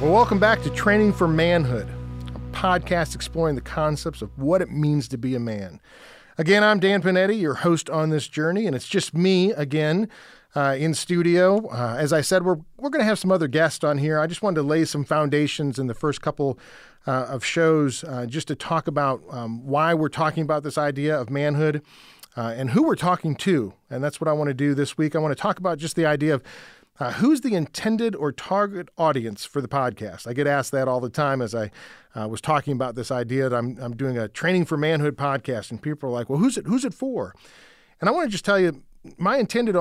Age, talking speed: 40-59, 235 wpm